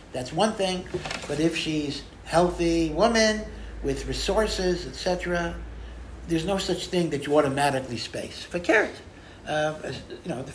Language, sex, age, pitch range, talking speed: English, male, 60-79, 125-165 Hz, 155 wpm